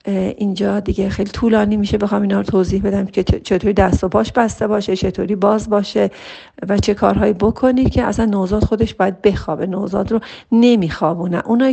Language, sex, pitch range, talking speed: Persian, female, 185-230 Hz, 175 wpm